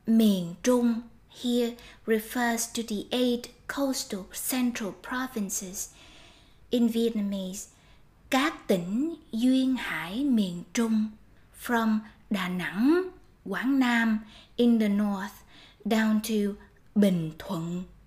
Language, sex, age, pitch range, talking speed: Vietnamese, female, 20-39, 210-250 Hz, 100 wpm